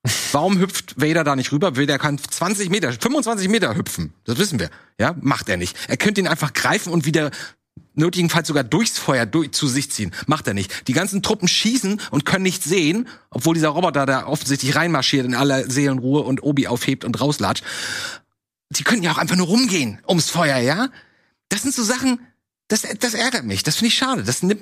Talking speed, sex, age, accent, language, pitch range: 205 wpm, male, 40-59, German, German, 145-215 Hz